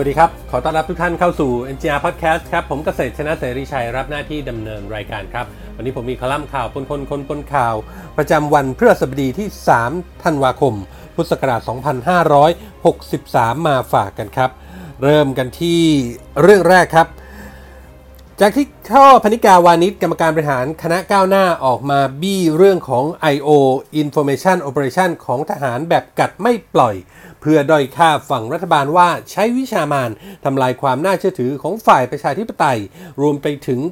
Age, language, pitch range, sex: 30-49, Thai, 135-185 Hz, male